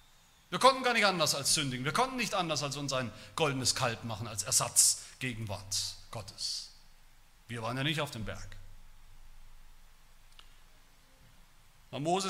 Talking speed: 145 wpm